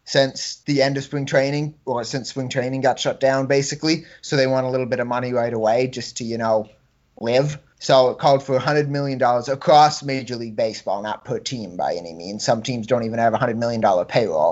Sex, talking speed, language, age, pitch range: male, 220 wpm, English, 20-39, 120-145 Hz